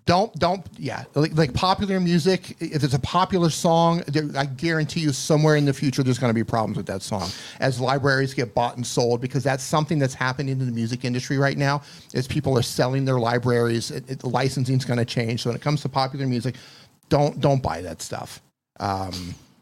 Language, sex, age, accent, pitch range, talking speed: English, male, 40-59, American, 120-150 Hz, 215 wpm